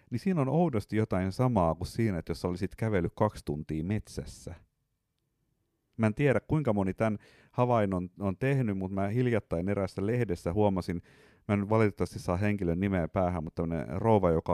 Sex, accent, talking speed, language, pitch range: male, native, 165 wpm, Finnish, 85-110 Hz